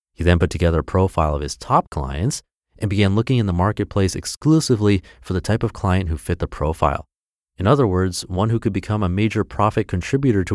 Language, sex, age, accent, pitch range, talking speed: English, male, 30-49, American, 85-115 Hz, 215 wpm